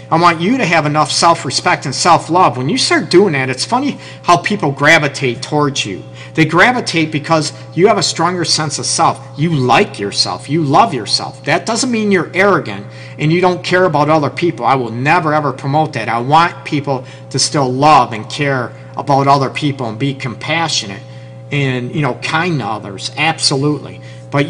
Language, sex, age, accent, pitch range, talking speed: English, male, 50-69, American, 130-160 Hz, 190 wpm